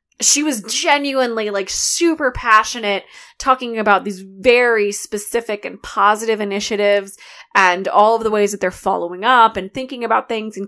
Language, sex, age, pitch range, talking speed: English, female, 20-39, 190-230 Hz, 155 wpm